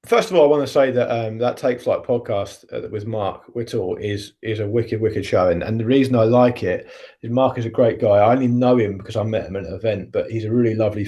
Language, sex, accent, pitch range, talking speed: English, male, British, 105-130 Hz, 275 wpm